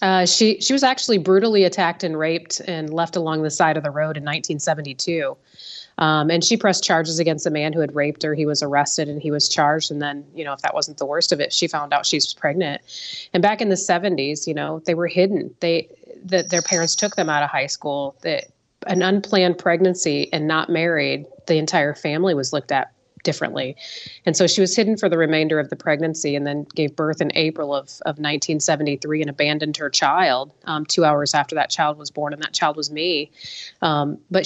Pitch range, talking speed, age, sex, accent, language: 150-185 Hz, 220 wpm, 30-49, female, American, English